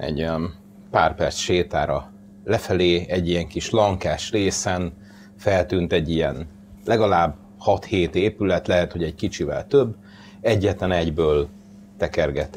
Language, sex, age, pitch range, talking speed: Hungarian, male, 30-49, 90-100 Hz, 115 wpm